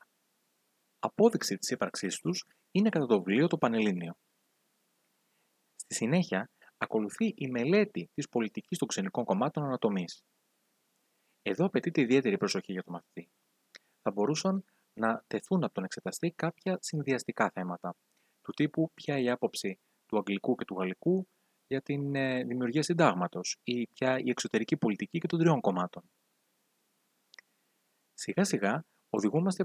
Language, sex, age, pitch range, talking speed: Greek, male, 30-49, 110-175 Hz, 130 wpm